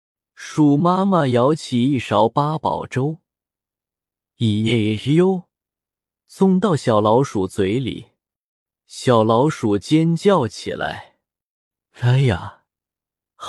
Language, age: Chinese, 20-39